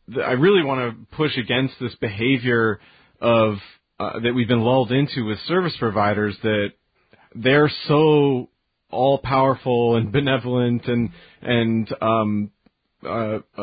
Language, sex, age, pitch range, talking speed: English, male, 30-49, 105-135 Hz, 130 wpm